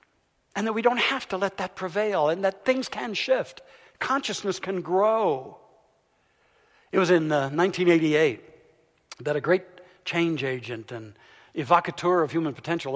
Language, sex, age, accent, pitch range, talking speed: English, male, 60-79, American, 130-190 Hz, 145 wpm